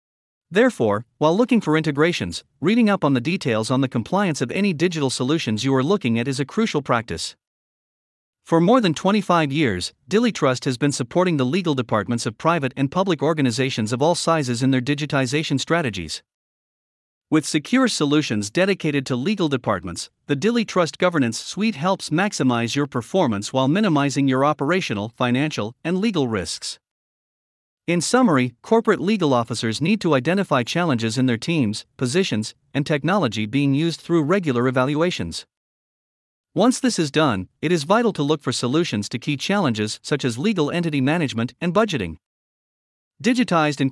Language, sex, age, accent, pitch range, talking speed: English, male, 50-69, American, 125-175 Hz, 160 wpm